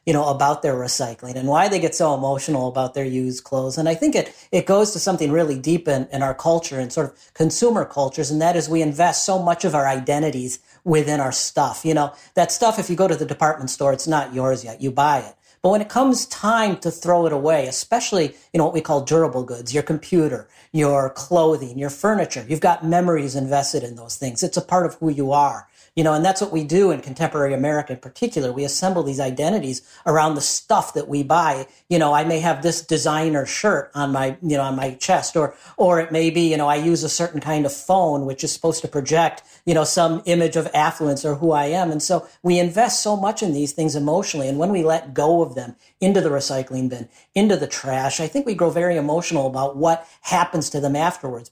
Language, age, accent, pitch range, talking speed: English, 50-69, American, 140-170 Hz, 240 wpm